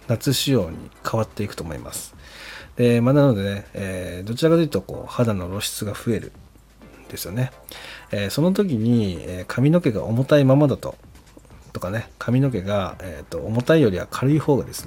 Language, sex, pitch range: Japanese, male, 95-130 Hz